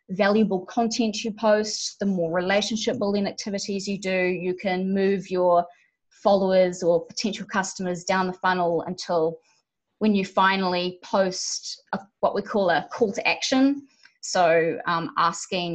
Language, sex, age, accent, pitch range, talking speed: English, female, 20-39, Australian, 175-210 Hz, 140 wpm